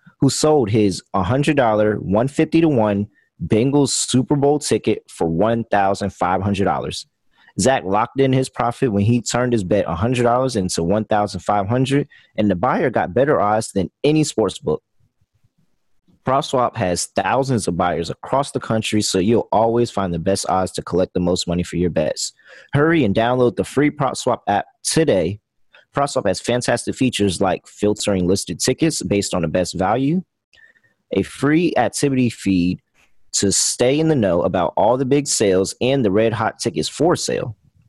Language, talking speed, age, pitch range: English, 160 wpm, 30-49, 95-130 Hz